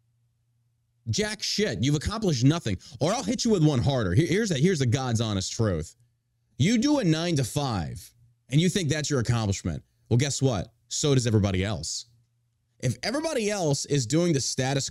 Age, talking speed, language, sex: 30-49, 185 wpm, English, male